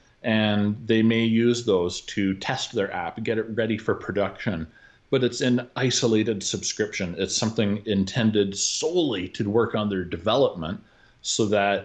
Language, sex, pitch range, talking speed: English, male, 100-120 Hz, 150 wpm